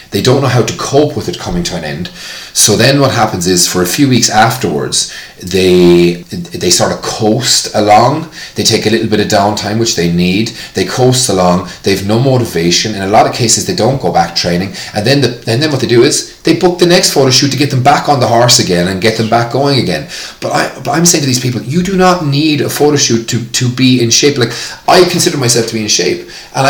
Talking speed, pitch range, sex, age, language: 250 wpm, 100-130 Hz, male, 30-49, English